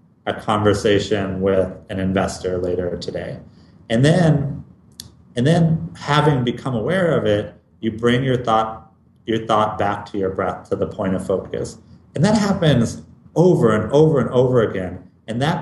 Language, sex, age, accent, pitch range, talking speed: English, male, 30-49, American, 100-135 Hz, 160 wpm